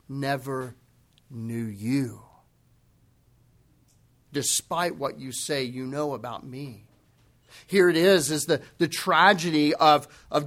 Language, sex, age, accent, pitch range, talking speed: English, male, 40-59, American, 140-205 Hz, 115 wpm